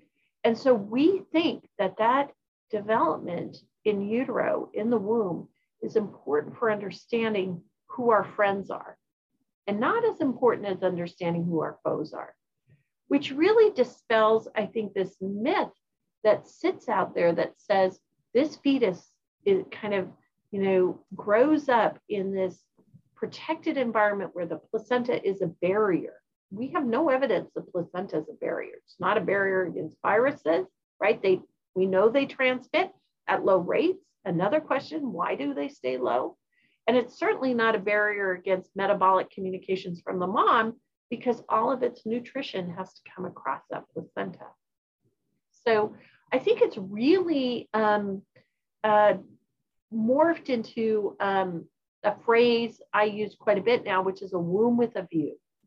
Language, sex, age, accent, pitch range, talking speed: English, female, 40-59, American, 190-255 Hz, 150 wpm